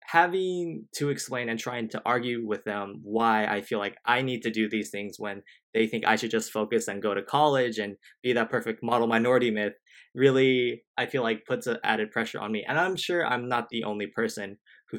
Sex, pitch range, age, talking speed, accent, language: male, 105-125 Hz, 20-39, 225 wpm, American, English